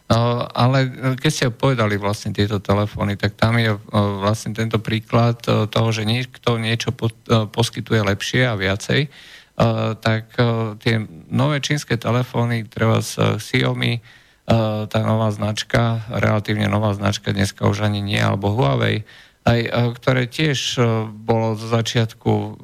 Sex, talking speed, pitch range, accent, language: male, 140 wpm, 105-120 Hz, Slovak, English